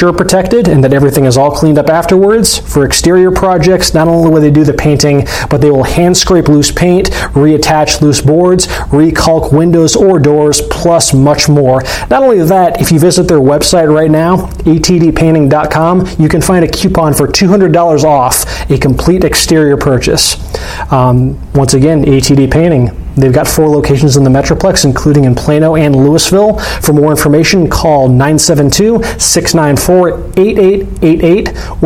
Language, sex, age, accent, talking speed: English, male, 30-49, American, 155 wpm